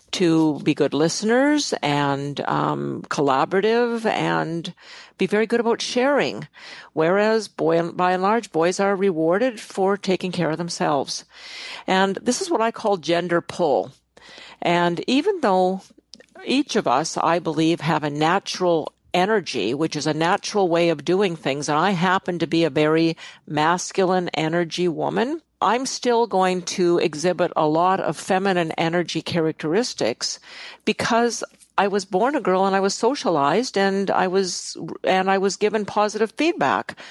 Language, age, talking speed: English, 50-69, 150 wpm